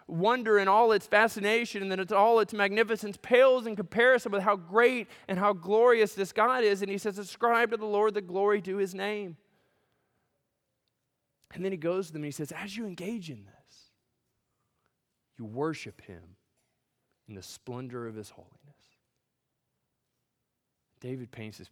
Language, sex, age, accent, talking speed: English, male, 20-39, American, 170 wpm